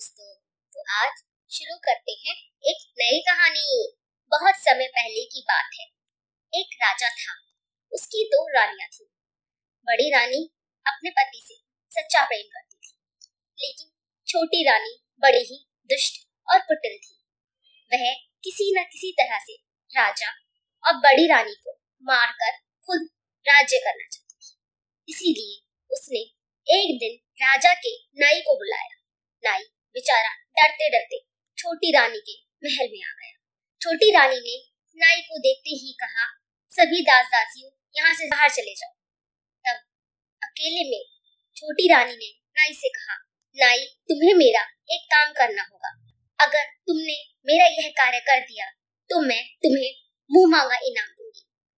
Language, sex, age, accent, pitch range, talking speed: Hindi, male, 20-39, native, 275-405 Hz, 140 wpm